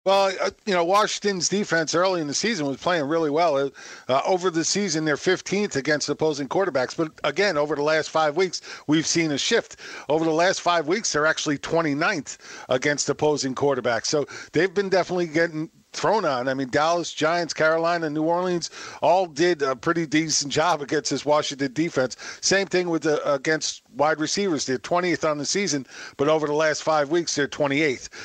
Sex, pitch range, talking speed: male, 140-165 Hz, 185 wpm